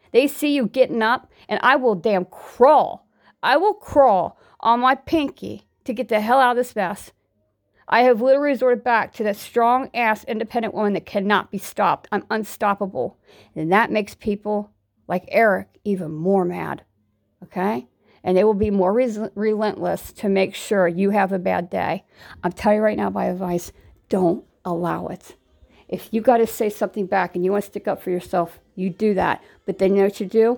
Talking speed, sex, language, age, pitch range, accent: 200 wpm, female, English, 50-69, 195-240 Hz, American